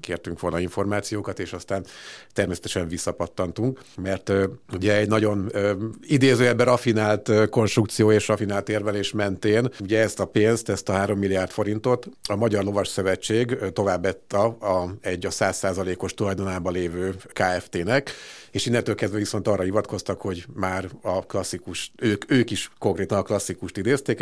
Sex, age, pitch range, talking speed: male, 50-69, 95-110 Hz, 155 wpm